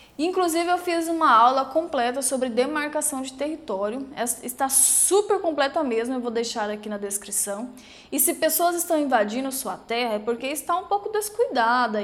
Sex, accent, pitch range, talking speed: female, Brazilian, 225-300 Hz, 170 wpm